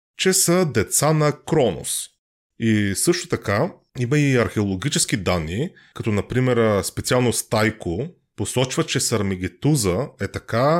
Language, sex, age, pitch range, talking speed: Bulgarian, male, 30-49, 105-140 Hz, 115 wpm